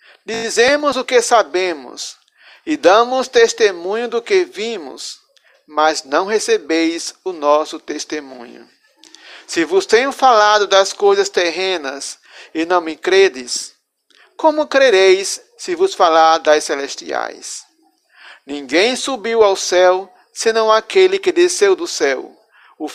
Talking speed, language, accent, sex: 120 wpm, Portuguese, Brazilian, male